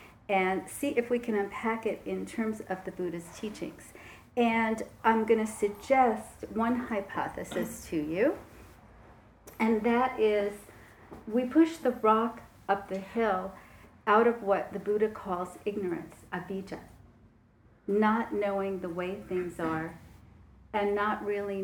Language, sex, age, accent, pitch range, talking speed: English, female, 40-59, American, 170-225 Hz, 135 wpm